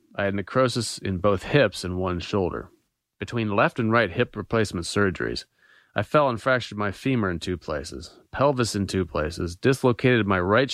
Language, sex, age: English, male, 30-49